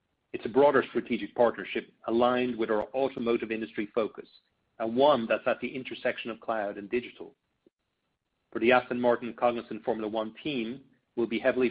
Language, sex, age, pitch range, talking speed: English, male, 40-59, 110-125 Hz, 165 wpm